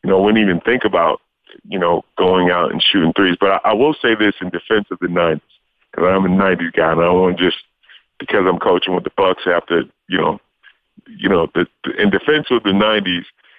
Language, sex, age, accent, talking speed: English, male, 40-59, American, 225 wpm